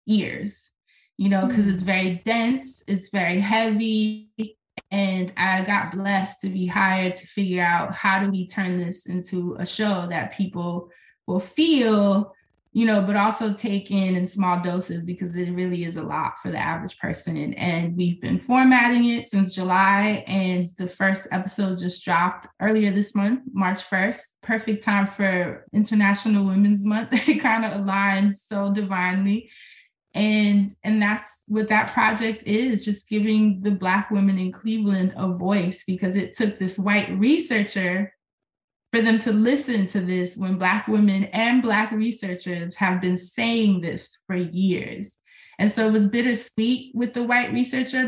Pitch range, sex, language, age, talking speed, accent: 185-215 Hz, female, English, 20-39, 160 wpm, American